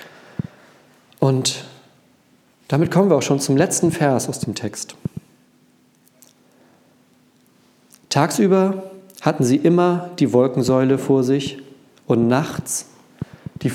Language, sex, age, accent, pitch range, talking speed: German, male, 40-59, German, 125-145 Hz, 100 wpm